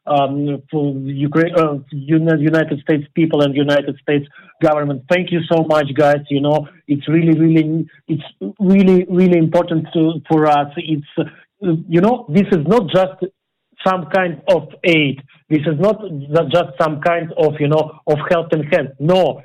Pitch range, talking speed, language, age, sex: 150-170 Hz, 170 wpm, English, 50-69, male